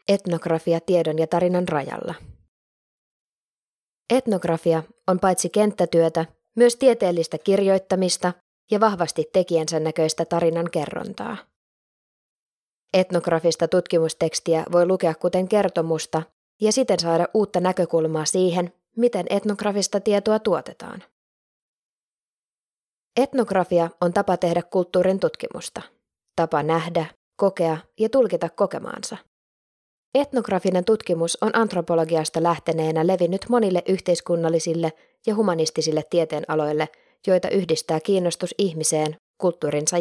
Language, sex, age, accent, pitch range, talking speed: Finnish, female, 20-39, native, 165-195 Hz, 95 wpm